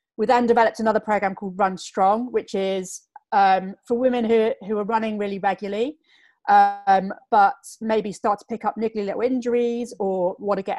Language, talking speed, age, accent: English, 185 wpm, 30-49, British